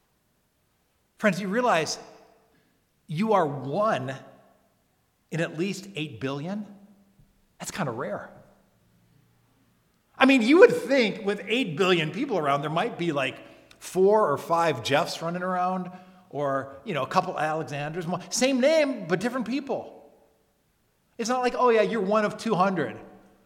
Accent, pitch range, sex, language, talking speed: American, 150-220 Hz, male, English, 140 wpm